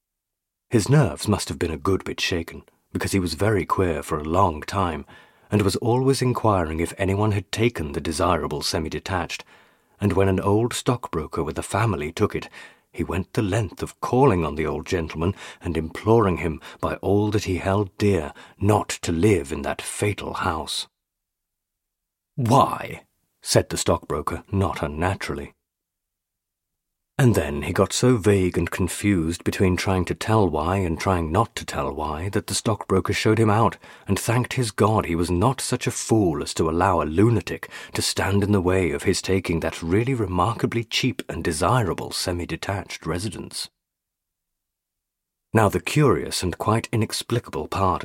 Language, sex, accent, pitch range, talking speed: English, male, British, 85-105 Hz, 165 wpm